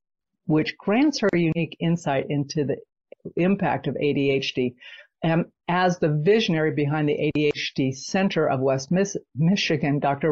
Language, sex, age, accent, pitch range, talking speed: English, female, 50-69, American, 140-170 Hz, 140 wpm